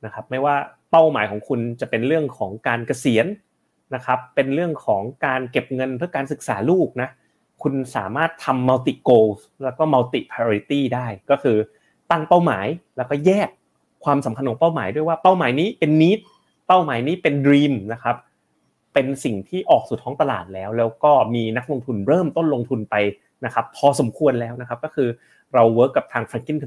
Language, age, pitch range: Thai, 30-49, 115-145 Hz